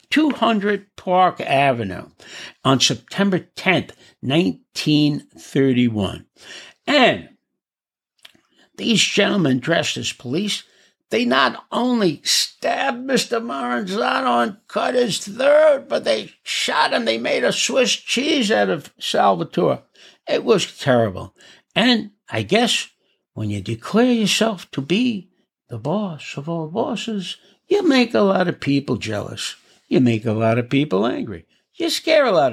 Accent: American